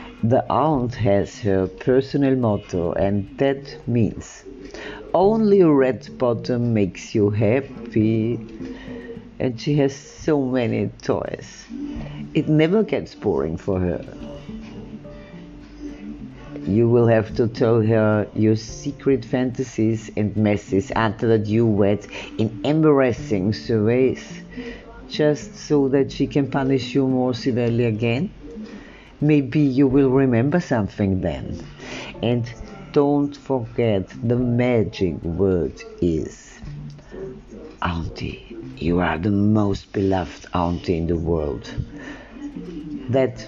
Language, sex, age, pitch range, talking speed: German, female, 50-69, 100-140 Hz, 110 wpm